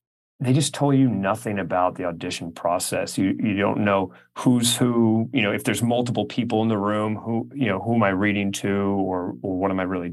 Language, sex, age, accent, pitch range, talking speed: English, male, 30-49, American, 95-120 Hz, 225 wpm